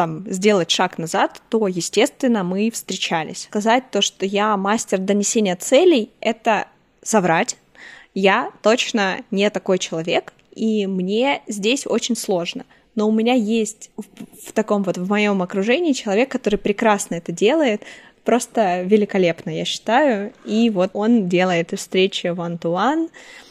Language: Russian